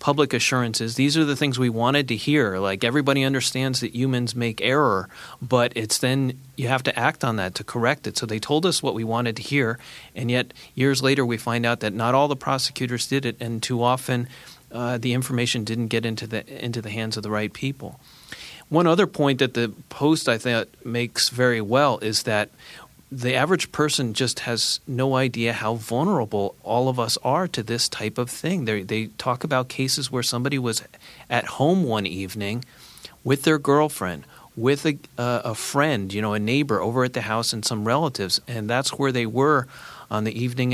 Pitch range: 115-135 Hz